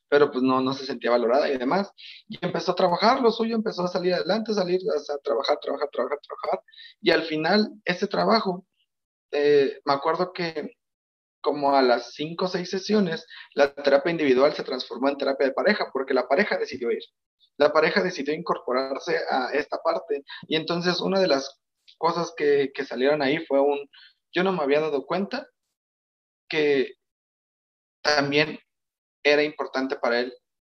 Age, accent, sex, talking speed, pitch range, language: 30-49, Mexican, male, 170 wpm, 135-185 Hz, Spanish